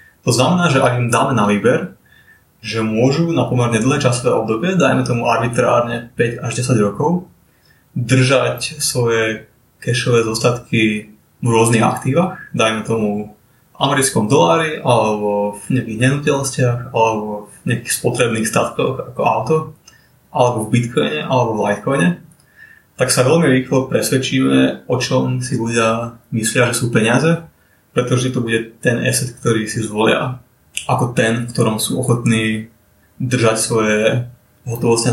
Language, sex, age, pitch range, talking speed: Slovak, male, 20-39, 115-130 Hz, 135 wpm